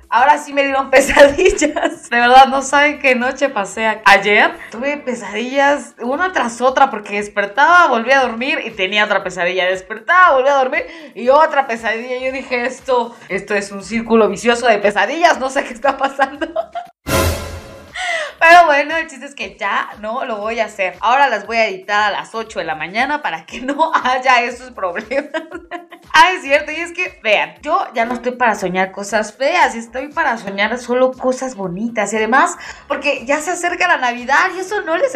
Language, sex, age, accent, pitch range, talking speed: Spanish, female, 20-39, Mexican, 215-290 Hz, 190 wpm